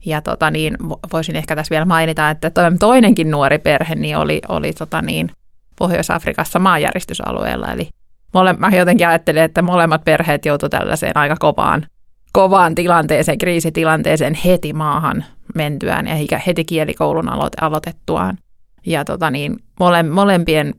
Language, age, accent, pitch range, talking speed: Finnish, 30-49, native, 150-175 Hz, 130 wpm